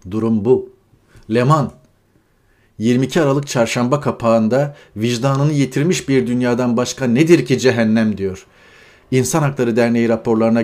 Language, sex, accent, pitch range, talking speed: Turkish, male, native, 100-130 Hz, 115 wpm